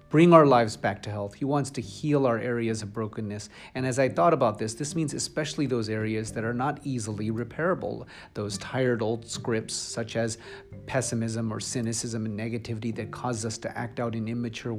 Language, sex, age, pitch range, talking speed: English, male, 40-59, 110-140 Hz, 200 wpm